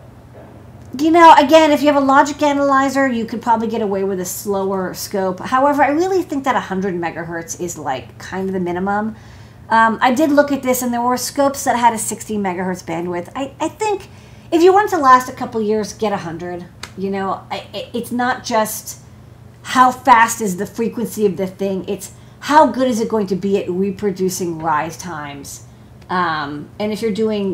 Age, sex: 40-59, female